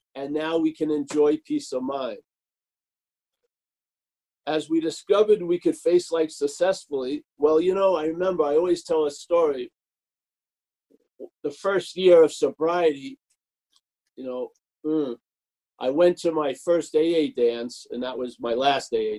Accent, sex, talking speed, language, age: American, male, 145 wpm, English, 50-69